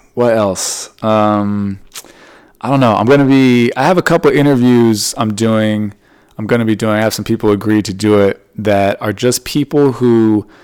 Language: English